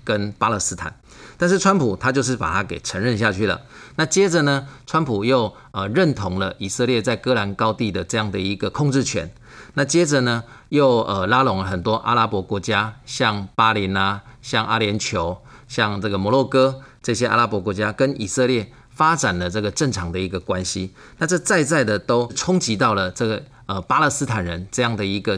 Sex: male